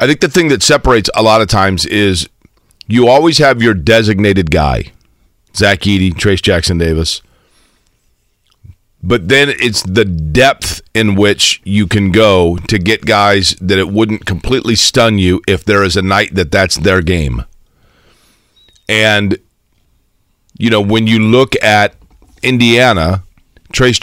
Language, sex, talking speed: English, male, 145 wpm